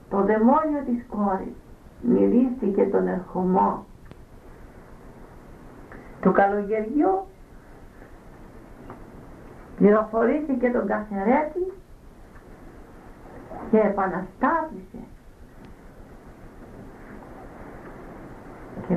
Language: English